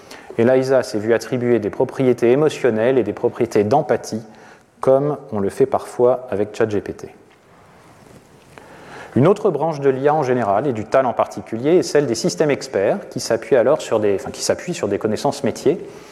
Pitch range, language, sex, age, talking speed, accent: 115-165 Hz, French, male, 30-49, 170 wpm, French